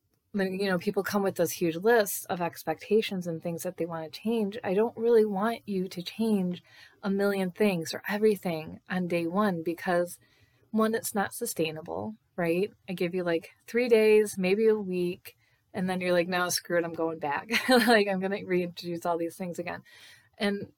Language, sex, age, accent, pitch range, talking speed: English, female, 20-39, American, 170-210 Hz, 195 wpm